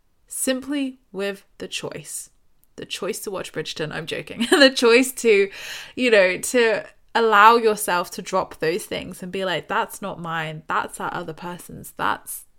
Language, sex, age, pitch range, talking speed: English, female, 20-39, 180-230 Hz, 160 wpm